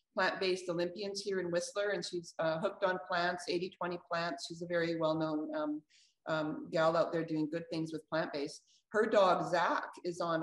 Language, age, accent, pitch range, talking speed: English, 40-59, American, 170-210 Hz, 190 wpm